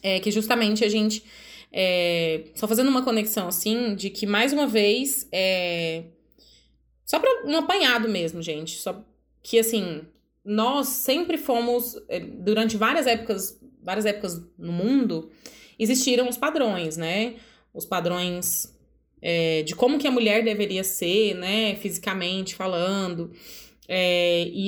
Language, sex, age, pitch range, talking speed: Portuguese, female, 20-39, 180-230 Hz, 120 wpm